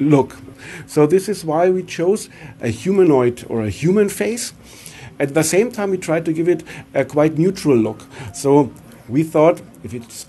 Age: 50-69